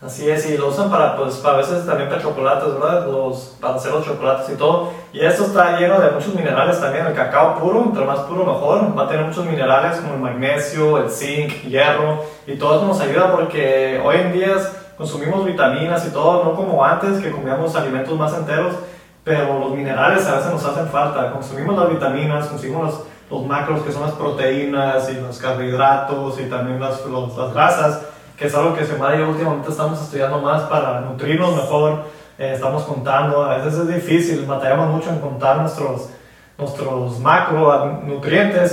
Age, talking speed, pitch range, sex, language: 20-39, 190 wpm, 135-165 Hz, male, Spanish